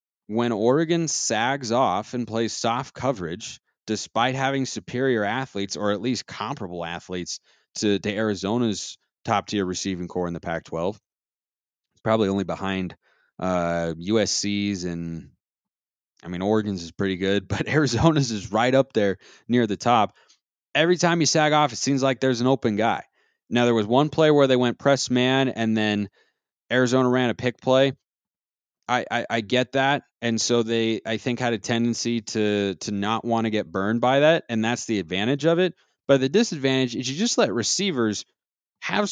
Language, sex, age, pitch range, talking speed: English, male, 20-39, 100-130 Hz, 175 wpm